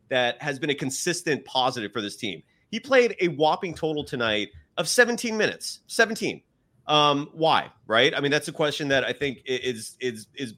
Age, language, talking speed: 30-49, English, 180 wpm